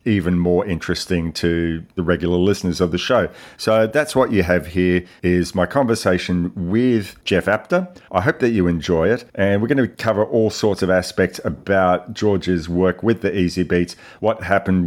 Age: 40-59